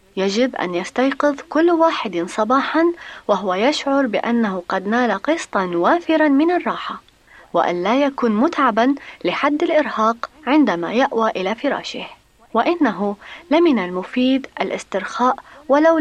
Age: 30-49